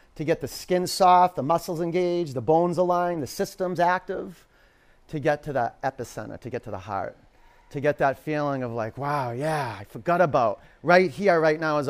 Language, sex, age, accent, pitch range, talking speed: English, male, 30-49, American, 125-180 Hz, 200 wpm